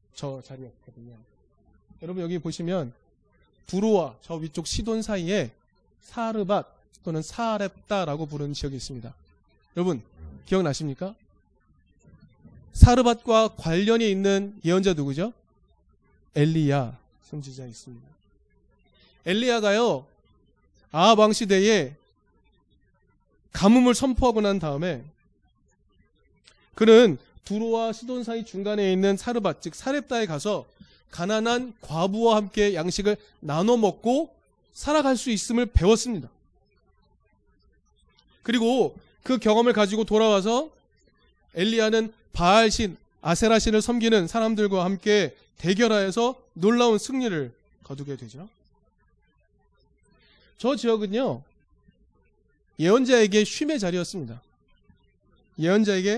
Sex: male